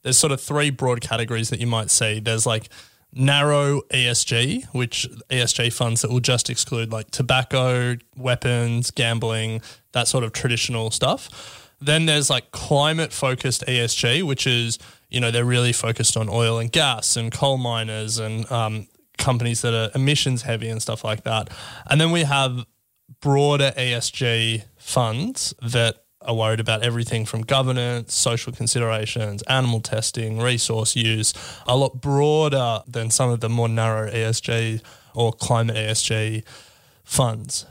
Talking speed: 150 wpm